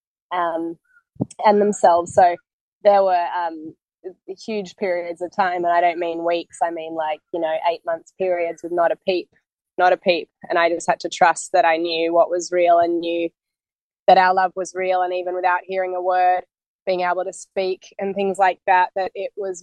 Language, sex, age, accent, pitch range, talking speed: English, female, 20-39, Australian, 170-195 Hz, 205 wpm